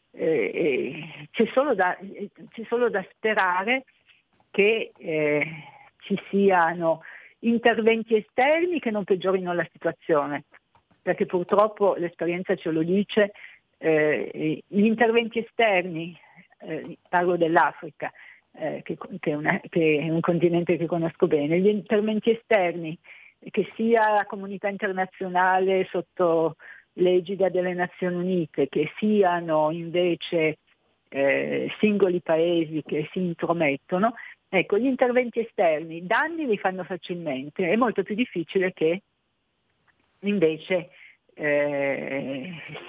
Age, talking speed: 50-69, 105 wpm